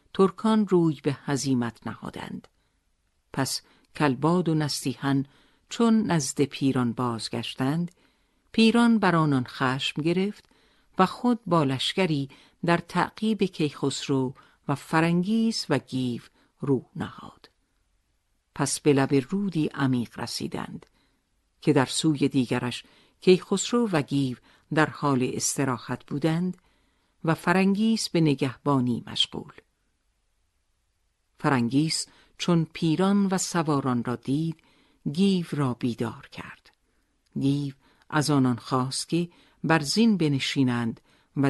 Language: Persian